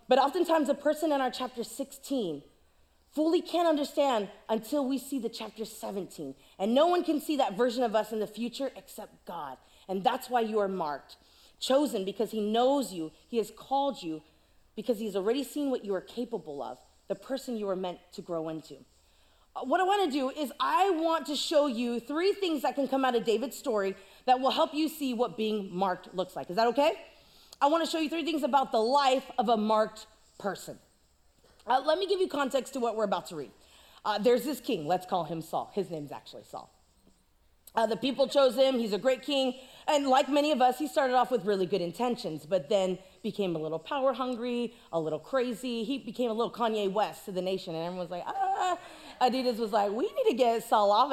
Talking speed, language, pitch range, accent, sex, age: 220 wpm, English, 210-290 Hz, American, female, 30-49